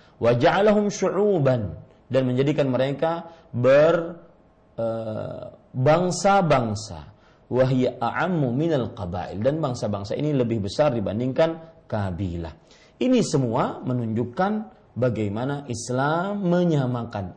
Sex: male